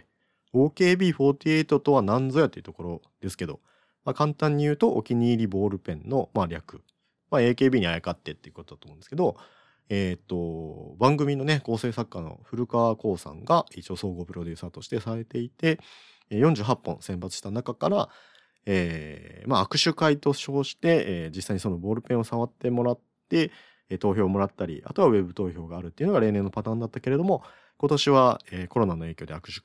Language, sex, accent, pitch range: Japanese, male, native, 90-125 Hz